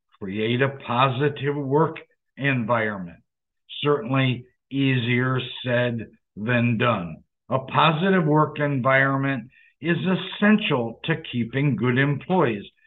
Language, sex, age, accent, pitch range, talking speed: English, male, 60-79, American, 125-160 Hz, 95 wpm